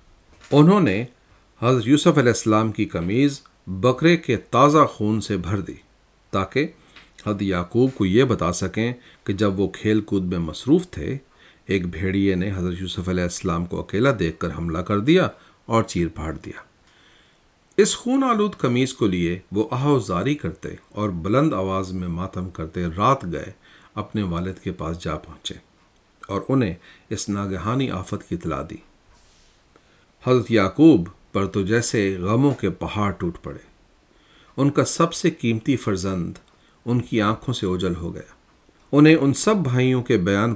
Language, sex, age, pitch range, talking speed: Urdu, male, 50-69, 95-125 Hz, 160 wpm